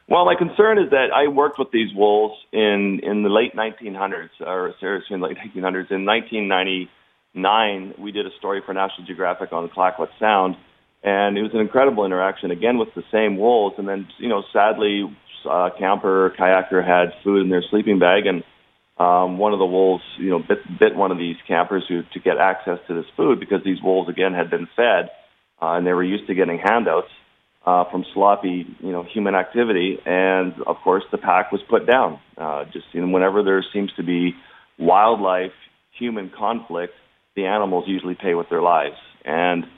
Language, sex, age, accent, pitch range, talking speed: English, male, 40-59, American, 90-100 Hz, 195 wpm